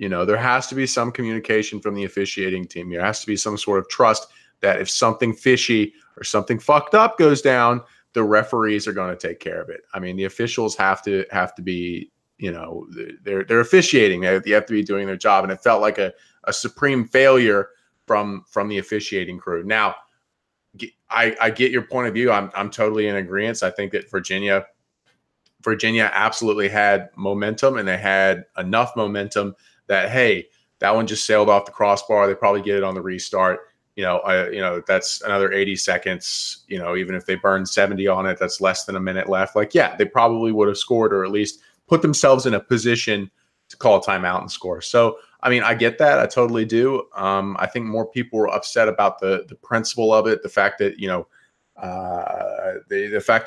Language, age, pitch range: English, 30-49, 100-120 Hz